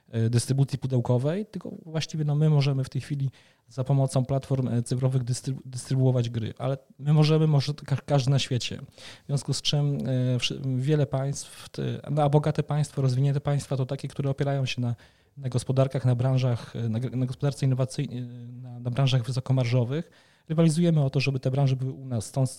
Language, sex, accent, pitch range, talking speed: Polish, male, native, 120-140 Hz, 180 wpm